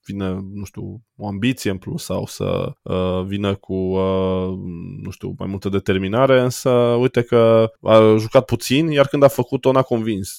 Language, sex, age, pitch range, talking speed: Romanian, male, 20-39, 95-115 Hz, 180 wpm